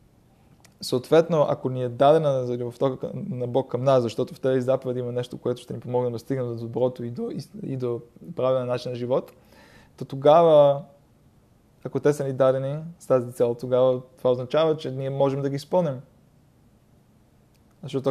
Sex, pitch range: male, 125-140 Hz